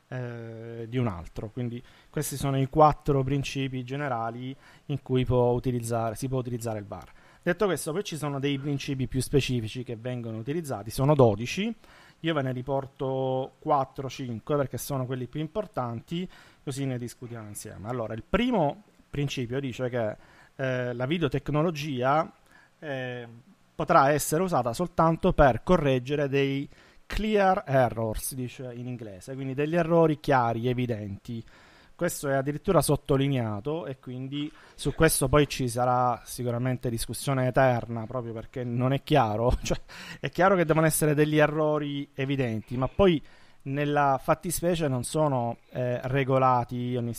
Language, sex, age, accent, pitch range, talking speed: Italian, male, 30-49, native, 125-145 Hz, 140 wpm